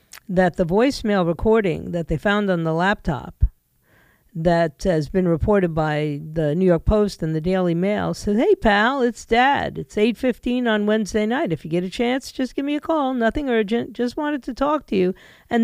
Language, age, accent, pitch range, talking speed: English, 50-69, American, 185-260 Hz, 200 wpm